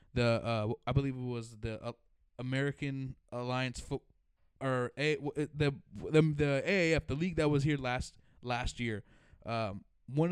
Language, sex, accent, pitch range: English, male, American, 120-145 Hz